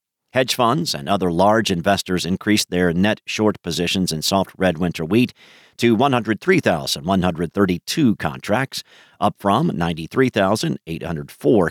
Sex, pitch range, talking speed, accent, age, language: male, 90-115 Hz, 115 wpm, American, 50-69, English